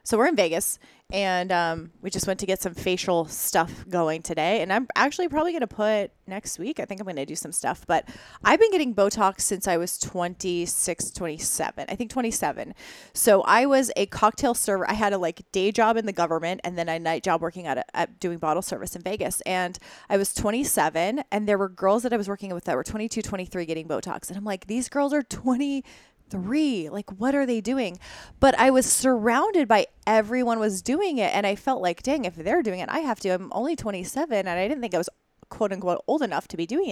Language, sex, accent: English, female, American